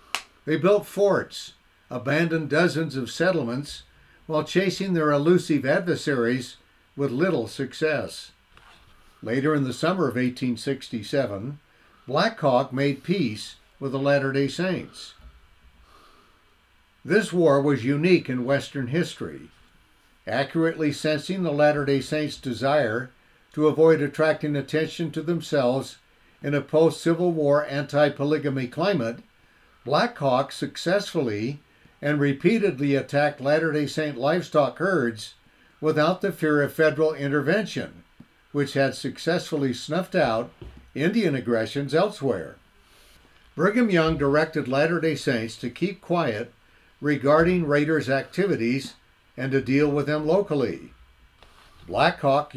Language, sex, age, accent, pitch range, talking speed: English, male, 60-79, American, 125-160 Hz, 110 wpm